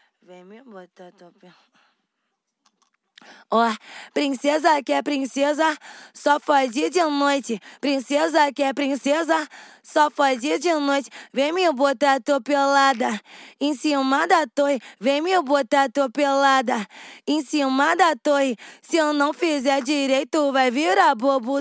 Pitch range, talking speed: 270-295 Hz, 130 wpm